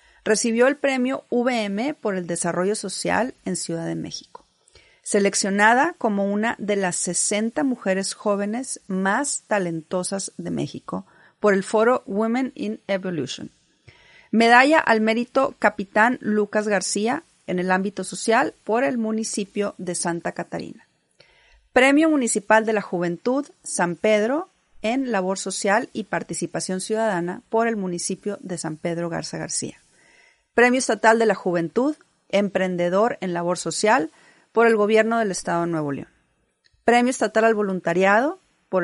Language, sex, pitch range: Spanish, female, 180-235 Hz